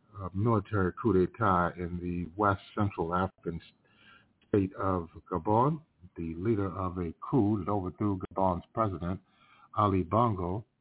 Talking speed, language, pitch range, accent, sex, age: 120 wpm, English, 85-110 Hz, American, male, 50-69